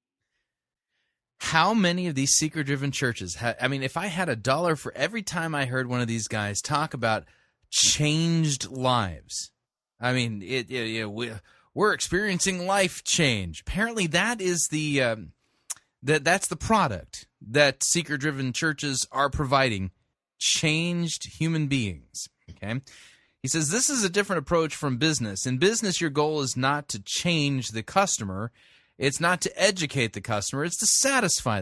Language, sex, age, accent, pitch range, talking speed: English, male, 30-49, American, 120-175 Hz, 160 wpm